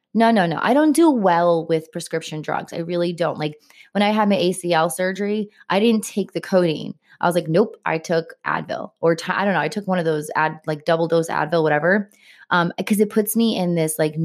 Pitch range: 165-195 Hz